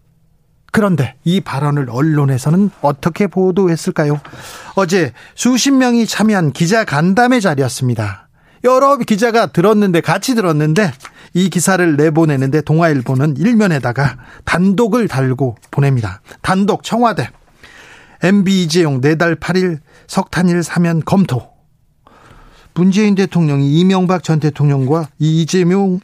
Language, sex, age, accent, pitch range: Korean, male, 40-59, native, 145-195 Hz